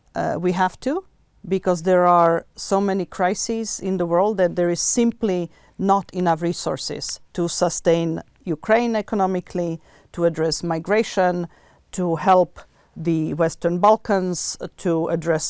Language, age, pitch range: Slovak, 40-59, 165-195 Hz